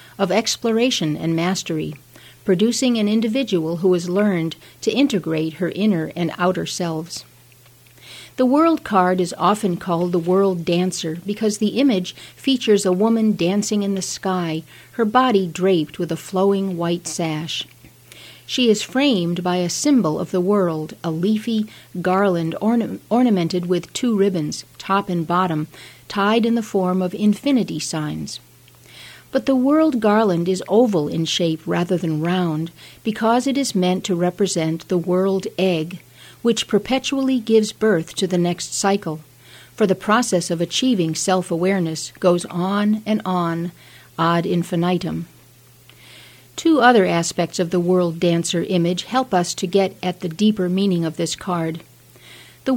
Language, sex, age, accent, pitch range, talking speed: English, female, 50-69, American, 170-215 Hz, 150 wpm